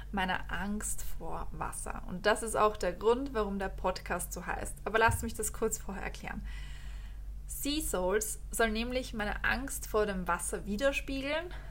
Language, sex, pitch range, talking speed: German, female, 195-235 Hz, 165 wpm